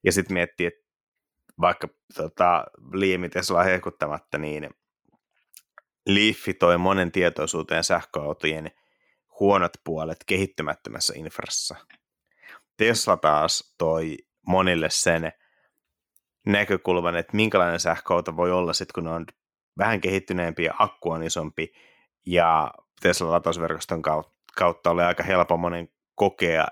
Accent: native